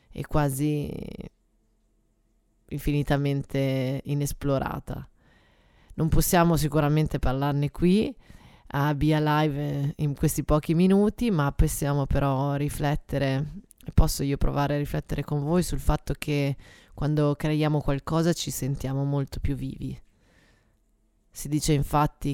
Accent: native